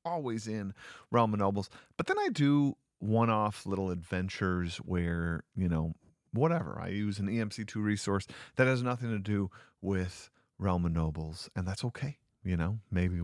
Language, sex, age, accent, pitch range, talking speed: English, male, 40-59, American, 85-110 Hz, 165 wpm